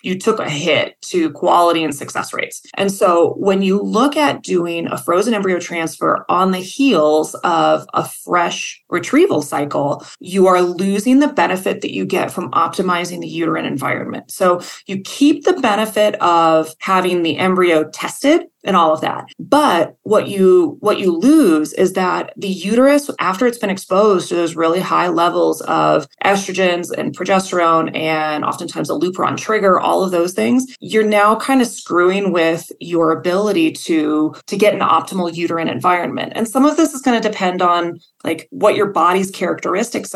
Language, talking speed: English, 175 wpm